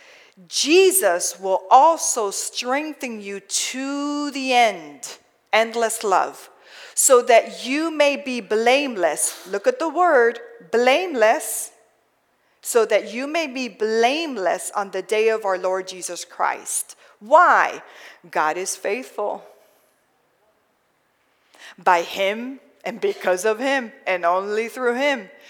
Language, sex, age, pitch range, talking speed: English, female, 40-59, 185-270 Hz, 115 wpm